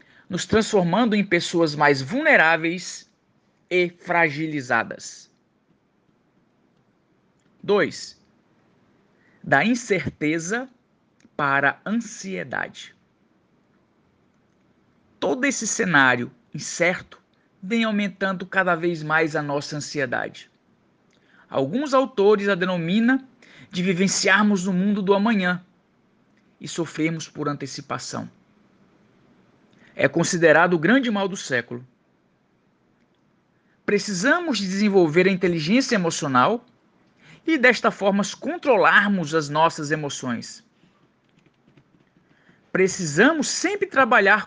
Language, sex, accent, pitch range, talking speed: Portuguese, male, Brazilian, 160-210 Hz, 85 wpm